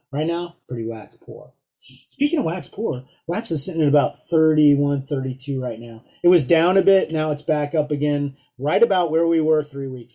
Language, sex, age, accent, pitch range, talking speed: English, male, 30-49, American, 145-180 Hz, 200 wpm